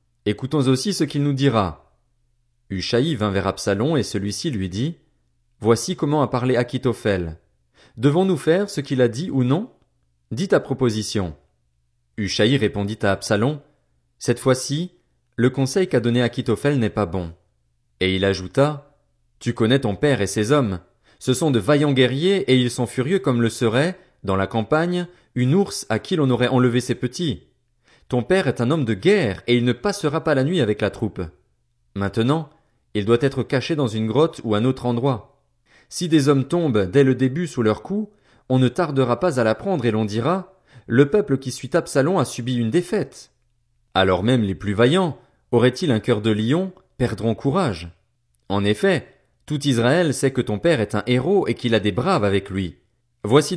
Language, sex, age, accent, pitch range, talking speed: French, male, 30-49, French, 105-145 Hz, 195 wpm